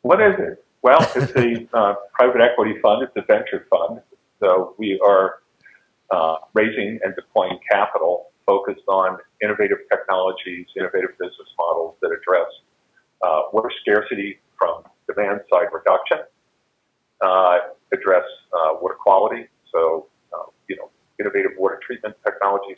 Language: English